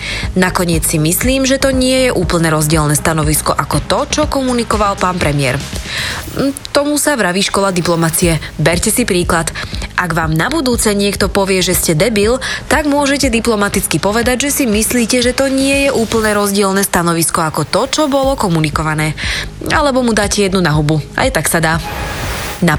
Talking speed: 165 wpm